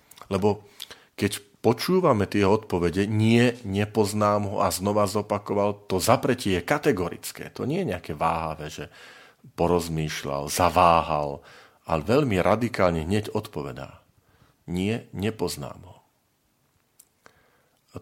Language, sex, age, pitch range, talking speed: Slovak, male, 40-59, 90-115 Hz, 105 wpm